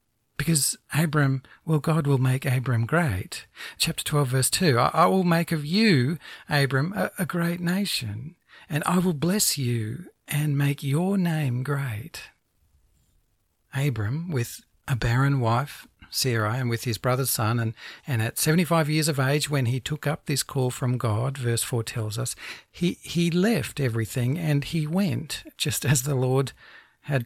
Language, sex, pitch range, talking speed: English, male, 120-155 Hz, 165 wpm